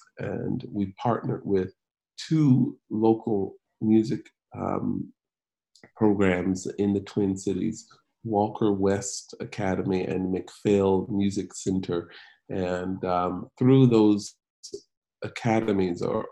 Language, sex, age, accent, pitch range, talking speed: English, male, 40-59, American, 95-120 Hz, 95 wpm